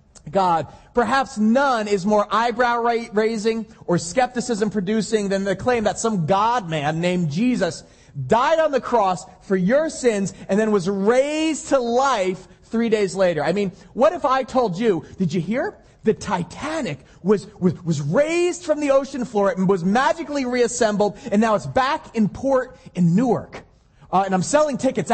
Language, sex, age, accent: English, male, 30-49, American